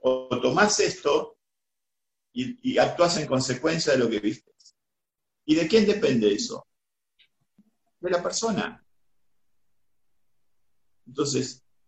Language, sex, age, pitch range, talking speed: Spanish, male, 50-69, 125-190 Hz, 105 wpm